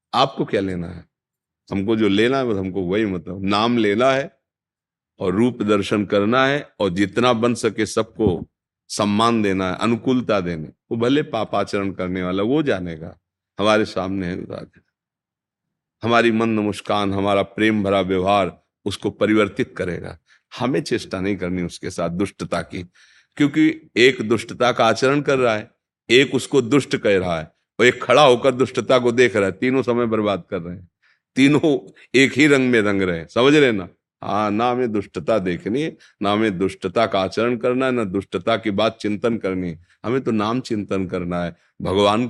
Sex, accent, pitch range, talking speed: male, native, 95-120 Hz, 175 wpm